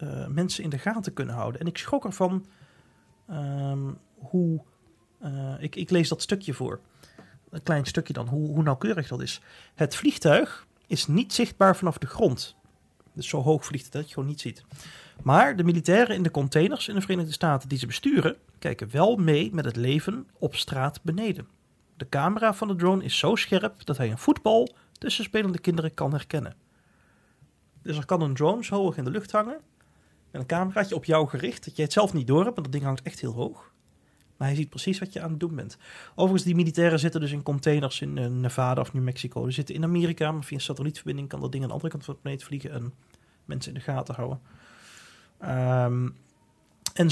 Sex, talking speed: male, 210 wpm